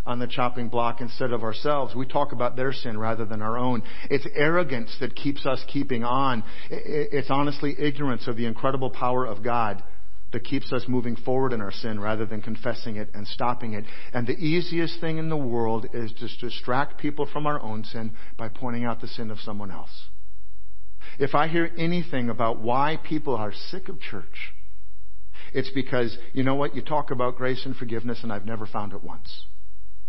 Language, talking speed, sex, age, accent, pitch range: English, 195 wpm, male, 50-69, American, 105-135 Hz